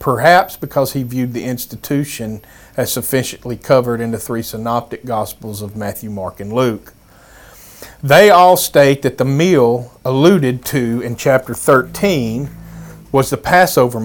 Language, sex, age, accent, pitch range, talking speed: English, male, 40-59, American, 115-140 Hz, 140 wpm